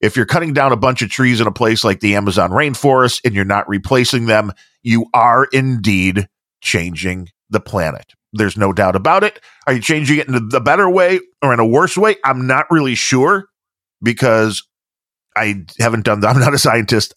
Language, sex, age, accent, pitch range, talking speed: English, male, 40-59, American, 100-145 Hz, 200 wpm